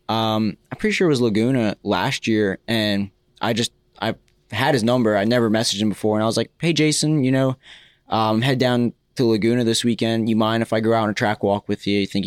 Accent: American